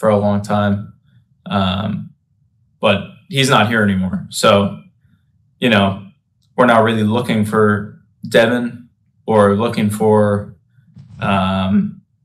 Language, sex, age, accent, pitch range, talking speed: English, male, 20-39, American, 100-125 Hz, 115 wpm